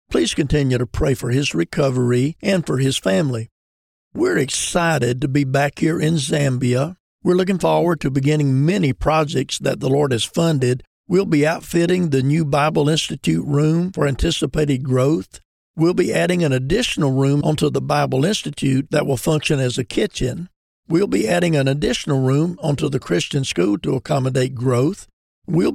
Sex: male